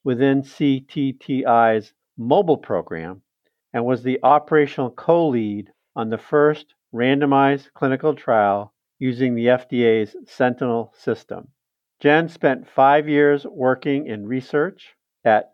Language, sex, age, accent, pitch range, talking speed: English, male, 50-69, American, 115-145 Hz, 110 wpm